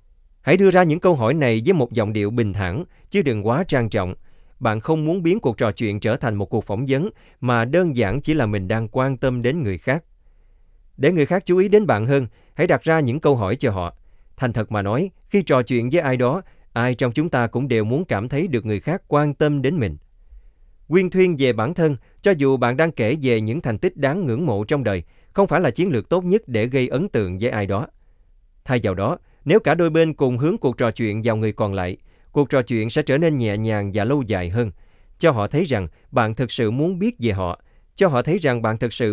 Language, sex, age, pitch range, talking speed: Vietnamese, male, 20-39, 105-145 Hz, 250 wpm